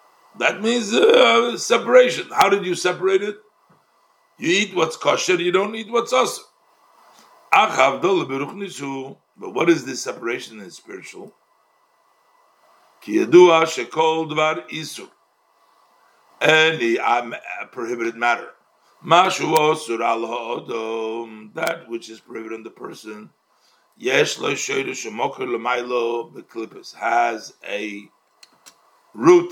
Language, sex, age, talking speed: English, male, 60-79, 85 wpm